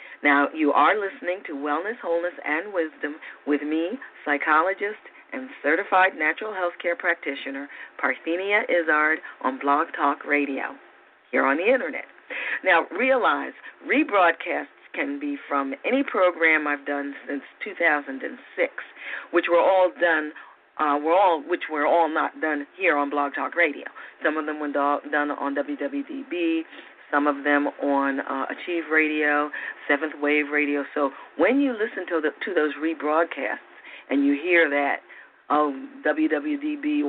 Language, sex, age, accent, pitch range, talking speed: English, female, 40-59, American, 145-190 Hz, 145 wpm